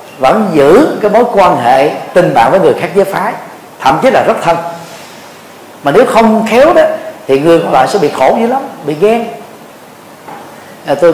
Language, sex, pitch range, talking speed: Vietnamese, male, 130-205 Hz, 190 wpm